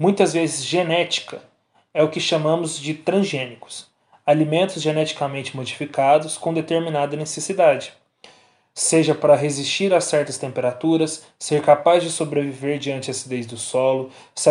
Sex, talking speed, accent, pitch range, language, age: male, 130 wpm, Brazilian, 145-170 Hz, Portuguese, 20-39